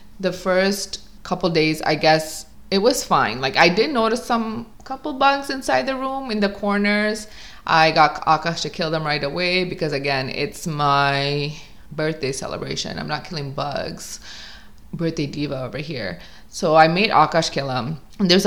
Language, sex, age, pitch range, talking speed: English, female, 20-39, 155-200 Hz, 165 wpm